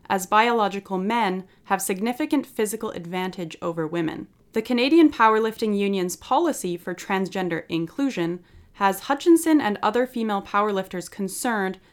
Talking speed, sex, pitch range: 120 wpm, female, 180-220 Hz